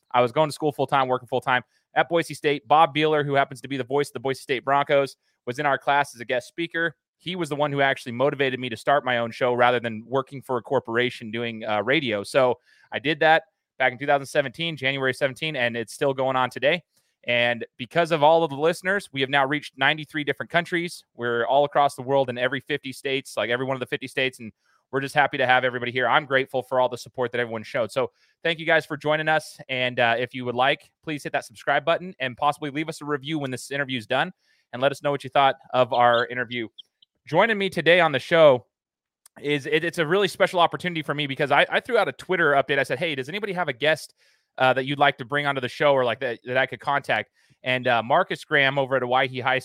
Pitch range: 125-155 Hz